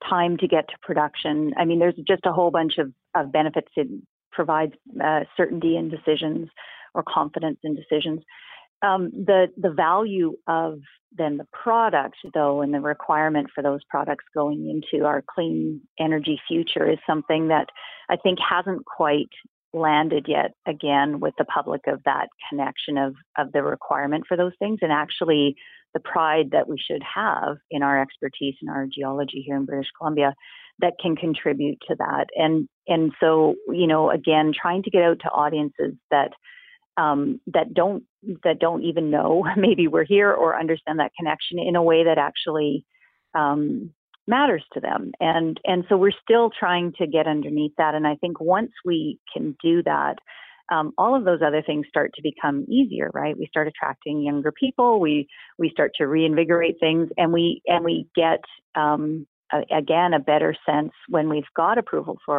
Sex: female